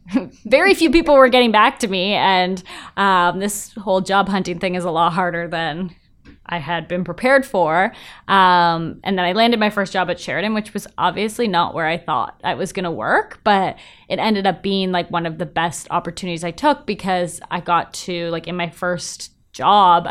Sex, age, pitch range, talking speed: female, 20-39, 165-200 Hz, 205 wpm